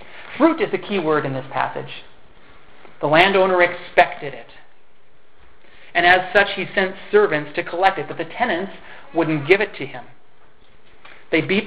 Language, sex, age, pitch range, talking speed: English, male, 30-49, 155-190 Hz, 160 wpm